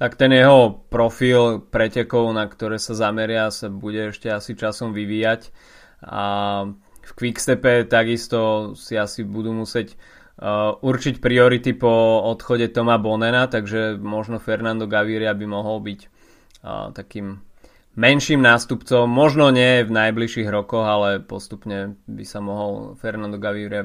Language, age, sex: Slovak, 20-39, male